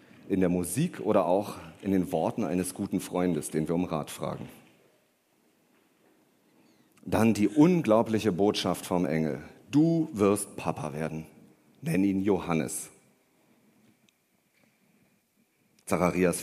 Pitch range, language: 85-105 Hz, German